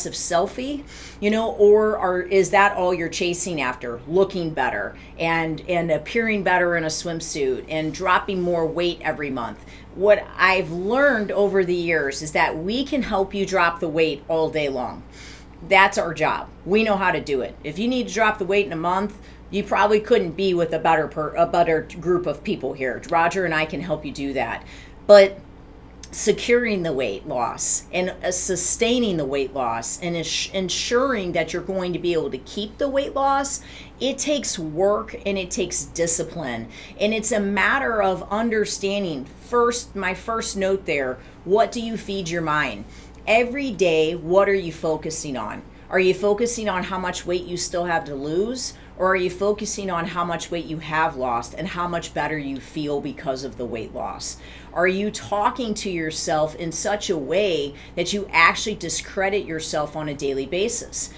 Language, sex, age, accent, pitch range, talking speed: English, female, 40-59, American, 160-205 Hz, 185 wpm